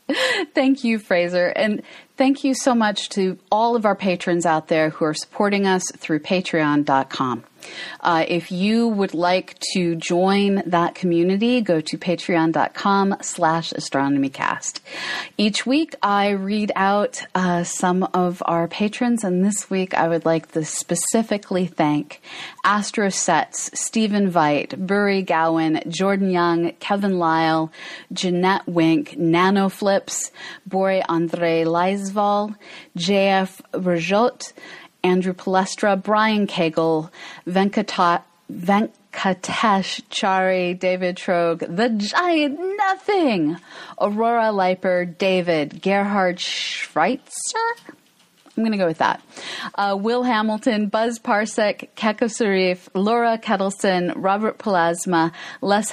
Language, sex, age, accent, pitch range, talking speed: English, female, 40-59, American, 170-210 Hz, 115 wpm